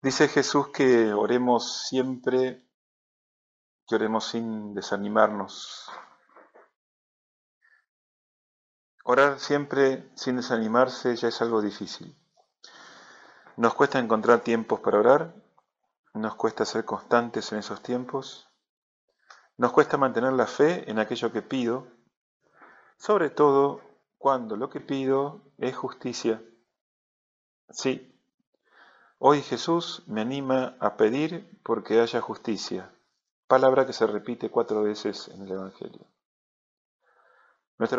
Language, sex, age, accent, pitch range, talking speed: Spanish, male, 40-59, Argentinian, 110-135 Hz, 105 wpm